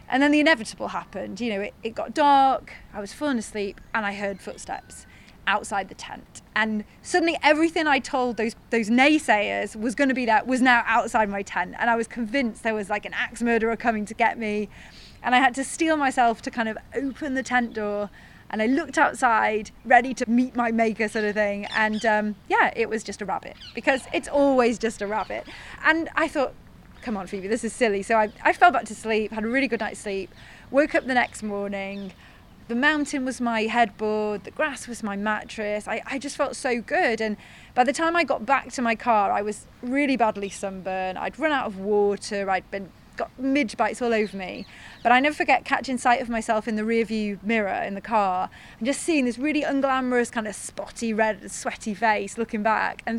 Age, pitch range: 20-39, 215-265 Hz